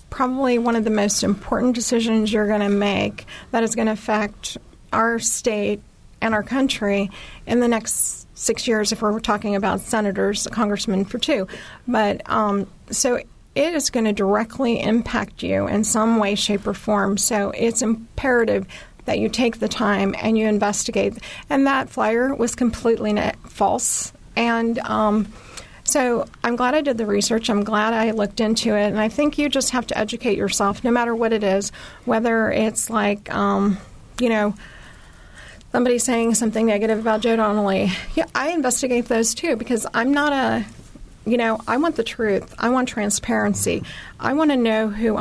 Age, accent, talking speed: 40-59, American, 175 wpm